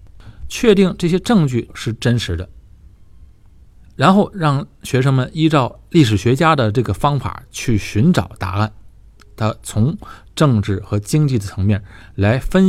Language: Chinese